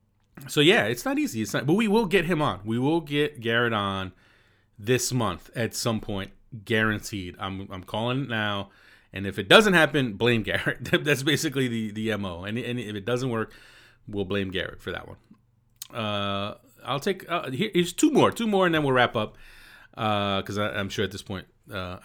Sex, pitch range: male, 105-155 Hz